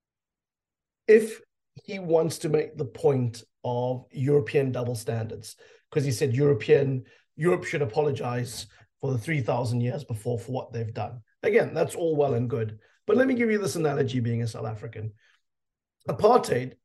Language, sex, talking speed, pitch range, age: English, male, 160 wpm, 120-160 Hz, 30-49